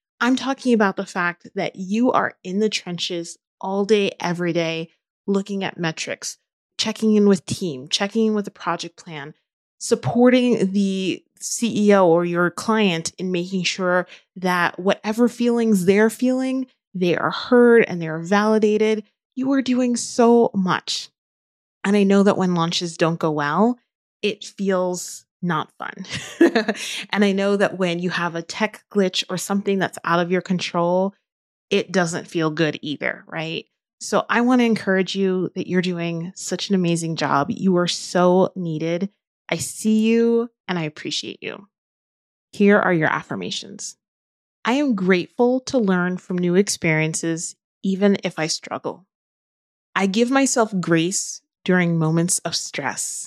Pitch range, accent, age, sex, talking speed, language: 175-215 Hz, American, 30-49, female, 155 wpm, English